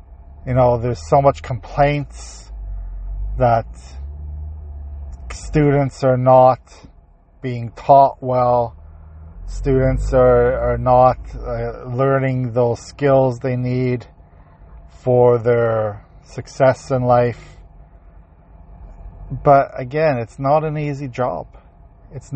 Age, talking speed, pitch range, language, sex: 40-59, 95 wpm, 85-130 Hz, English, male